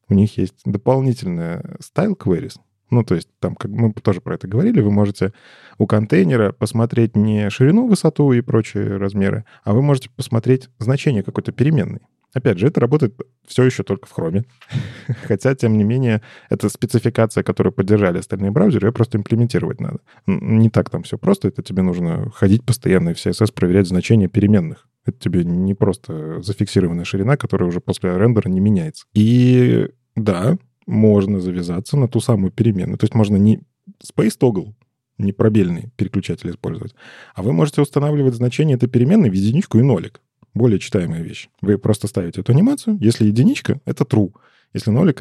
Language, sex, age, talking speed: Russian, male, 20-39, 170 wpm